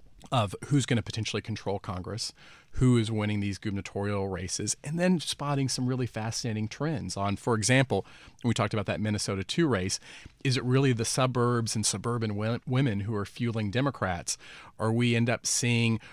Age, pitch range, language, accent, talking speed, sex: 40-59, 105-120 Hz, English, American, 175 wpm, male